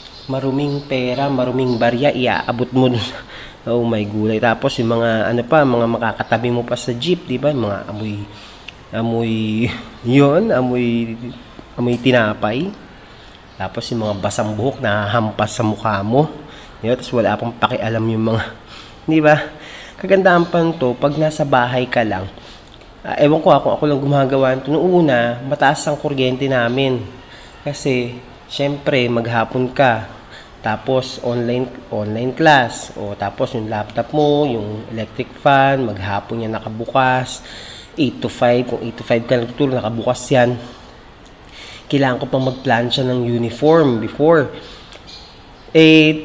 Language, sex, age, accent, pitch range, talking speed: Filipino, male, 30-49, native, 115-140 Hz, 140 wpm